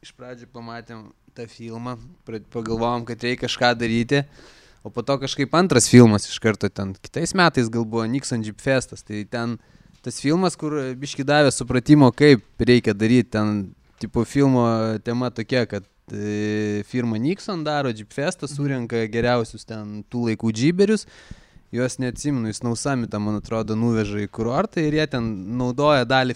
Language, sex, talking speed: English, male, 155 wpm